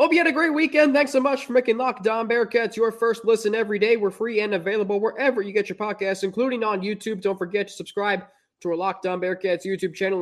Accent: American